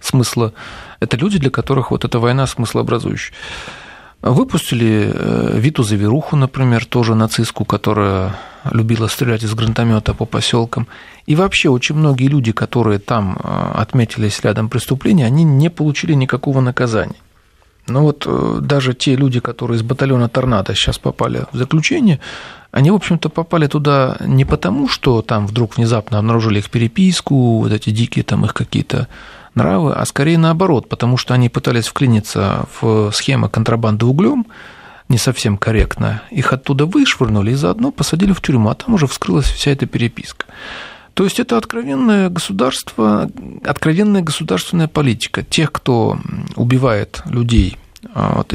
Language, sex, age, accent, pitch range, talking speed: Russian, male, 40-59, native, 115-150 Hz, 140 wpm